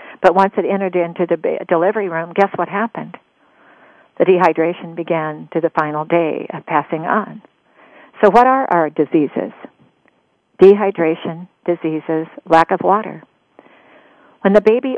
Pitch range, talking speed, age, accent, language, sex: 170-210 Hz, 135 wpm, 50-69, American, English, female